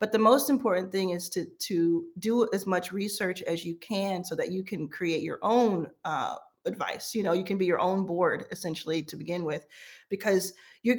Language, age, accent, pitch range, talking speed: English, 40-59, American, 180-235 Hz, 210 wpm